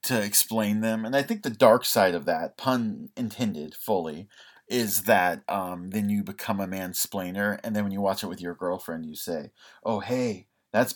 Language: English